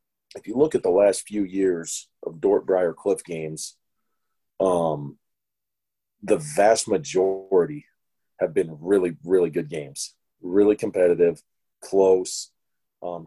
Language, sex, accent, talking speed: English, male, American, 115 wpm